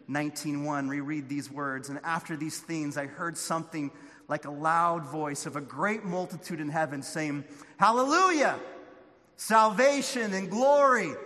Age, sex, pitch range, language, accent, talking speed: 30-49, male, 155-220 Hz, English, American, 140 wpm